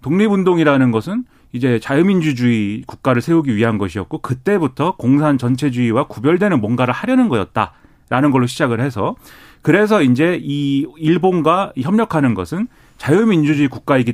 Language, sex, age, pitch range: Korean, male, 30-49, 125-185 Hz